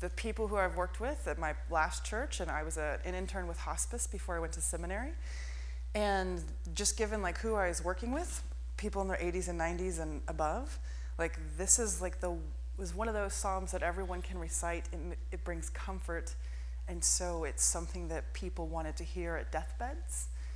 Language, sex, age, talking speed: English, female, 20-39, 200 wpm